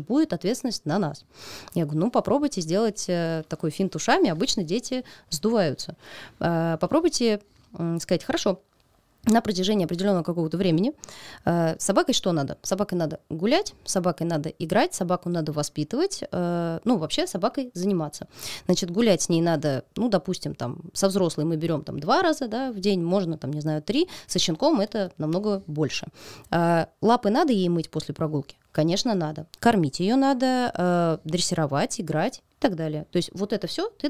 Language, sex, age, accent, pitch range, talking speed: Russian, female, 20-39, native, 165-230 Hz, 165 wpm